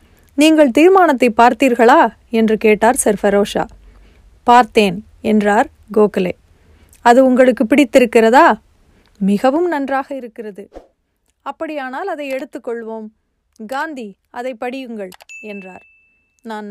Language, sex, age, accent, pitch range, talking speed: Tamil, female, 30-49, native, 220-275 Hz, 85 wpm